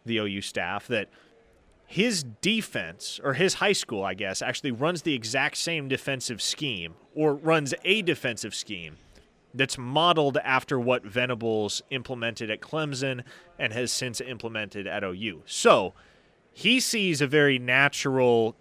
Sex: male